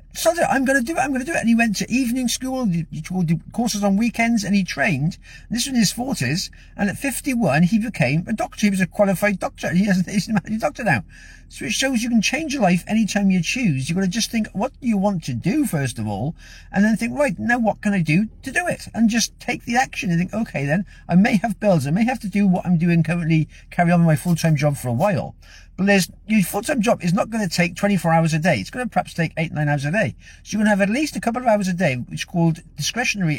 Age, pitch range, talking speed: 50-69, 165-220 Hz, 280 wpm